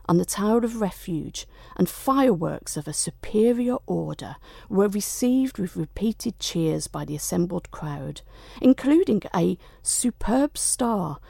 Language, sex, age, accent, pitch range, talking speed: English, female, 50-69, British, 150-215 Hz, 125 wpm